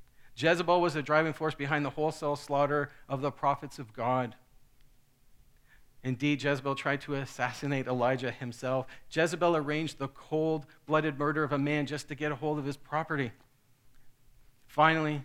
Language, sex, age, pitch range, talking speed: English, male, 50-69, 125-145 Hz, 150 wpm